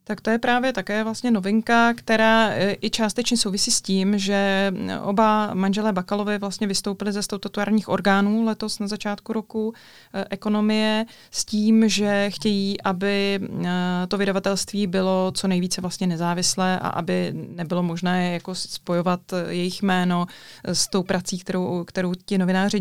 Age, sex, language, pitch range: 20-39, female, Czech, 180-200 Hz